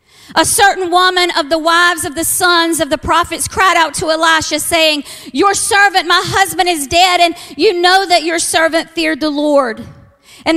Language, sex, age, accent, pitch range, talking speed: English, female, 50-69, American, 300-350 Hz, 185 wpm